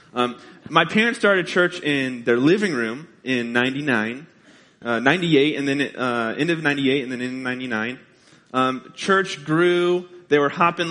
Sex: male